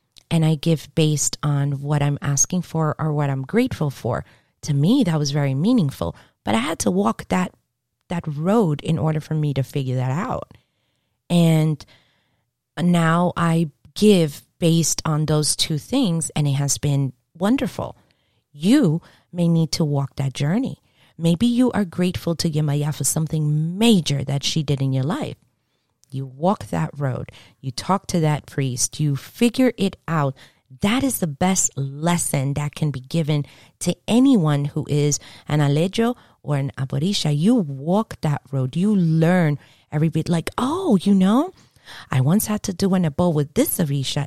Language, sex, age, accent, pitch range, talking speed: English, female, 30-49, American, 140-180 Hz, 170 wpm